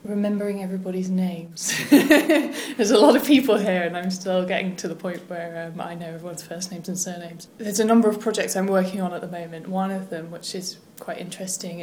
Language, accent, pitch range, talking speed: English, British, 170-195 Hz, 220 wpm